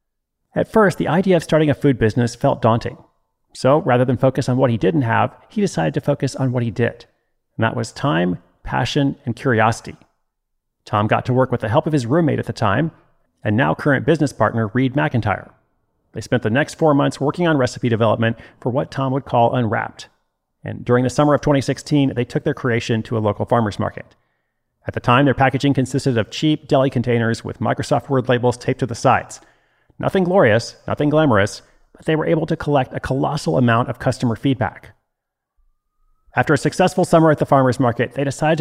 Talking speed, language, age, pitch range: 200 wpm, English, 40-59, 115-145 Hz